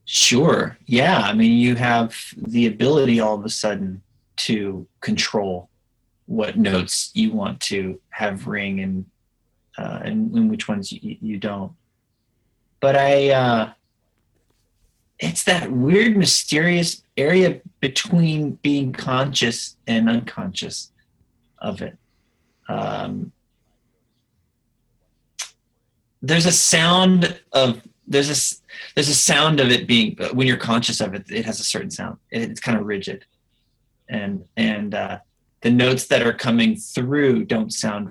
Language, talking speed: English, 130 wpm